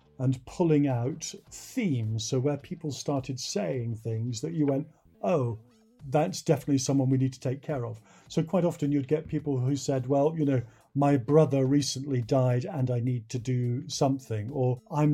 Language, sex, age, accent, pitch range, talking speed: English, male, 50-69, British, 120-145 Hz, 180 wpm